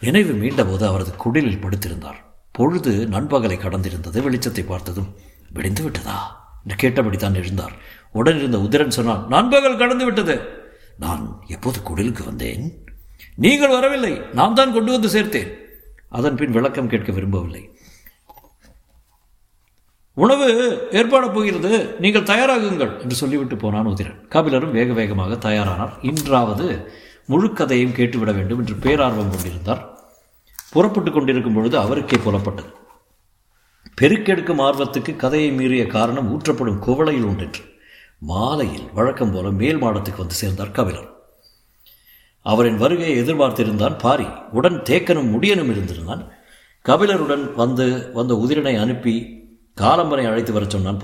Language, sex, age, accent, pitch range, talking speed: Tamil, male, 60-79, native, 100-140 Hz, 110 wpm